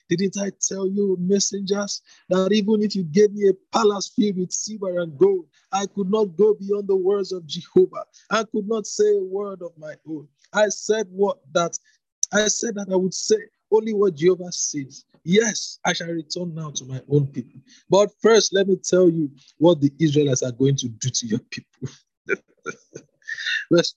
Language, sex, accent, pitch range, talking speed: English, male, Nigerian, 140-195 Hz, 190 wpm